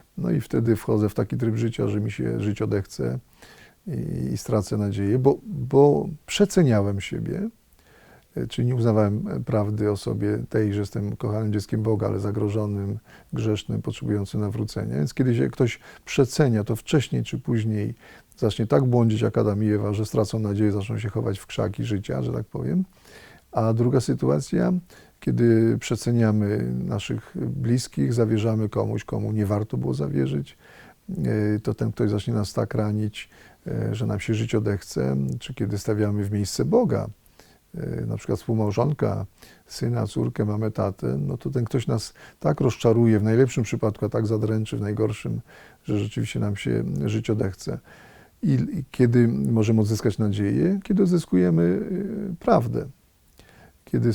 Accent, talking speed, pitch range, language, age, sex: native, 150 wpm, 105-120 Hz, Polish, 40-59, male